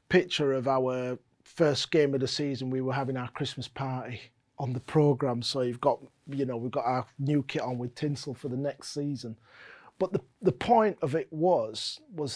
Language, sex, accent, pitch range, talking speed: English, male, British, 125-160 Hz, 205 wpm